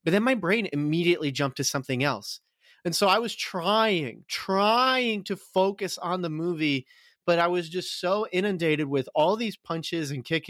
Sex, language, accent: male, English, American